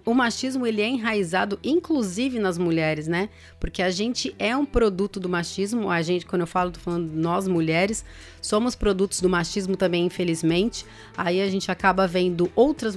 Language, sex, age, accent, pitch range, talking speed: Portuguese, female, 30-49, Brazilian, 180-210 Hz, 175 wpm